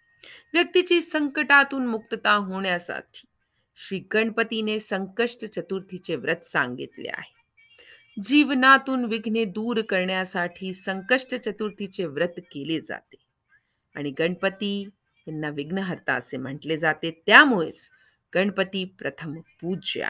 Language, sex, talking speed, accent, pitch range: Hindi, female, 50 wpm, native, 170-280 Hz